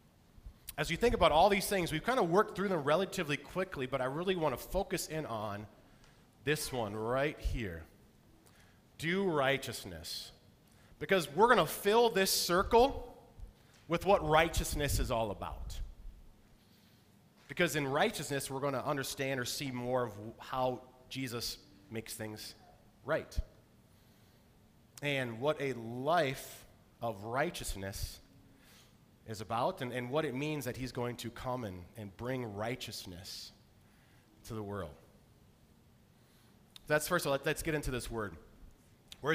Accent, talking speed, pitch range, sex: American, 145 wpm, 110-155 Hz, male